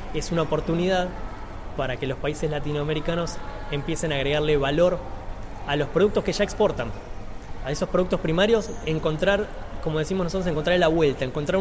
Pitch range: 135-175 Hz